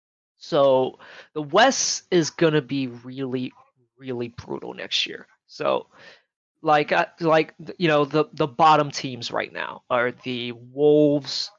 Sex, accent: male, American